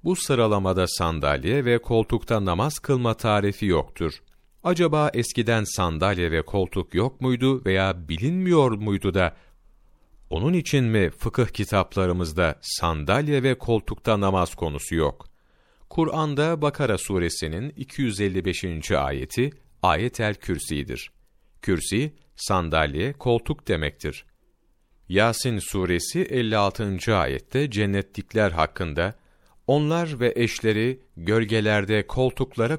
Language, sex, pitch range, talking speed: Turkish, male, 90-125 Hz, 95 wpm